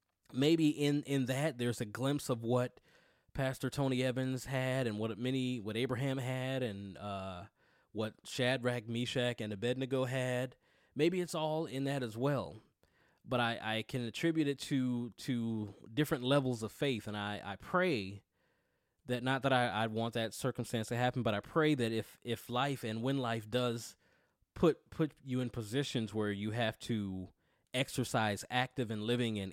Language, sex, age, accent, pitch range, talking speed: English, male, 20-39, American, 110-135 Hz, 175 wpm